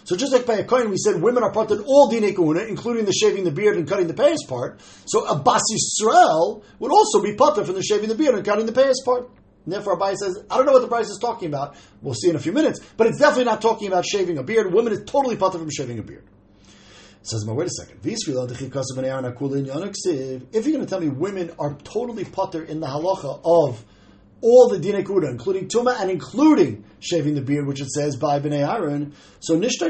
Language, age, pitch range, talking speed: English, 40-59, 150-225 Hz, 235 wpm